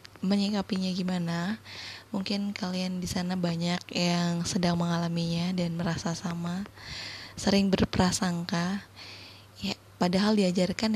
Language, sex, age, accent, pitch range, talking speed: Indonesian, female, 20-39, native, 170-195 Hz, 100 wpm